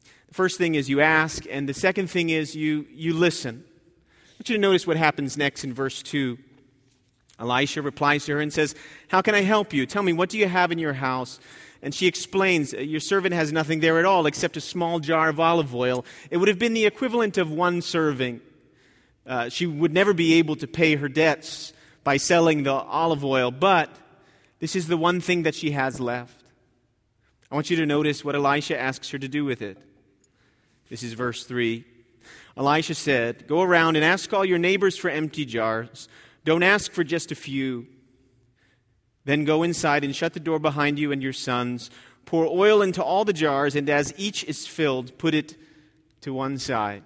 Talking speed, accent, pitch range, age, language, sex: 200 wpm, American, 125-170 Hz, 30-49, English, male